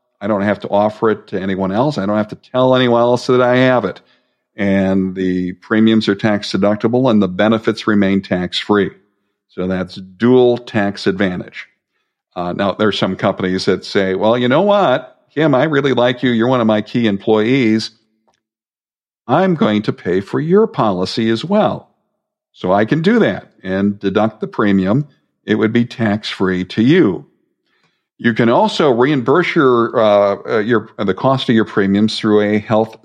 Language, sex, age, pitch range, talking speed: English, male, 50-69, 95-115 Hz, 180 wpm